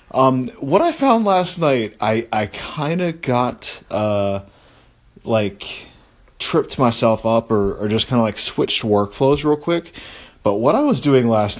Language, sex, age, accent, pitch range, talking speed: English, male, 20-39, American, 100-125 Hz, 165 wpm